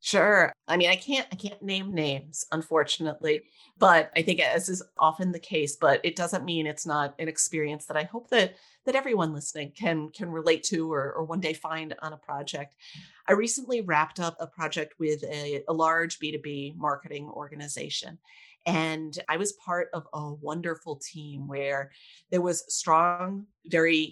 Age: 30-49